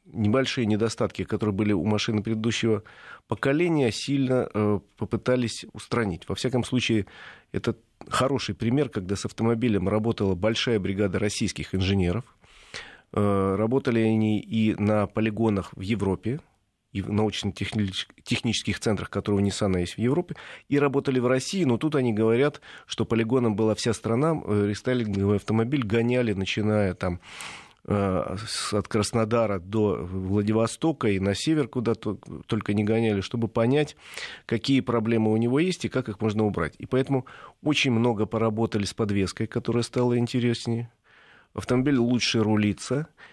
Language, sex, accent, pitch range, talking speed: Russian, male, native, 100-120 Hz, 135 wpm